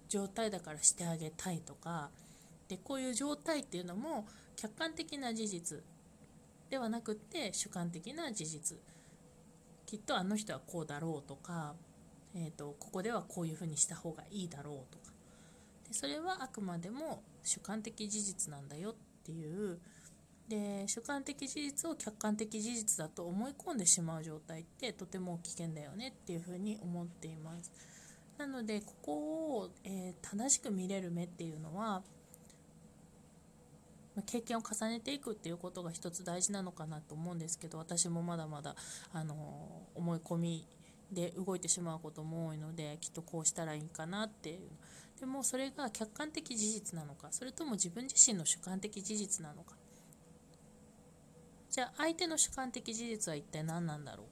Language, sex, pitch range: Japanese, female, 165-220 Hz